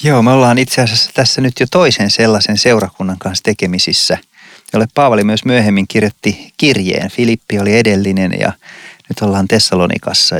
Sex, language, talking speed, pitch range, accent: male, Finnish, 150 wpm, 100-125 Hz, native